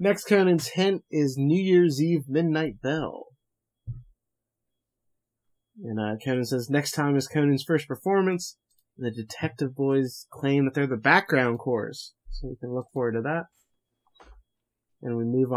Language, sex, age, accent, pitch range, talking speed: English, male, 30-49, American, 120-160 Hz, 150 wpm